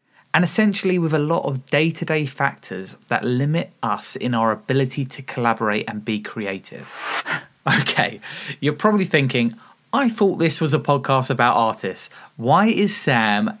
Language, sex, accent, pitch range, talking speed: English, male, British, 120-160 Hz, 150 wpm